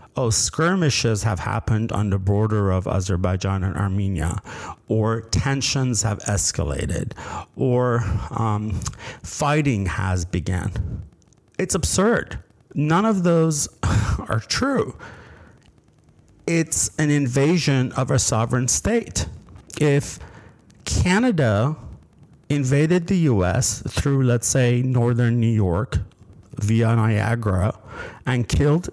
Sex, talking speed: male, 100 wpm